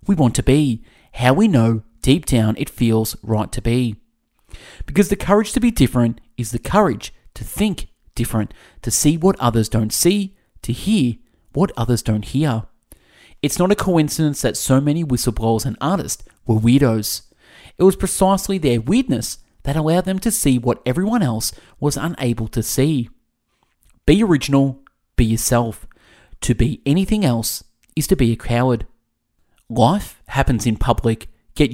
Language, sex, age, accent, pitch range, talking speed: English, male, 30-49, Australian, 115-175 Hz, 160 wpm